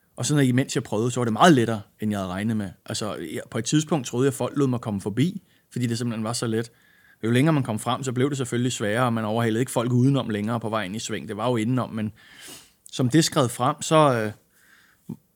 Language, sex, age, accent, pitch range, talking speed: Danish, male, 30-49, native, 115-140 Hz, 260 wpm